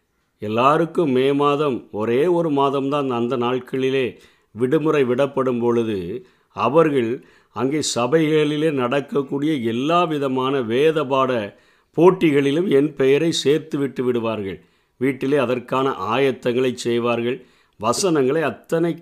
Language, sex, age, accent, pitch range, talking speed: Tamil, male, 50-69, native, 125-150 Hz, 90 wpm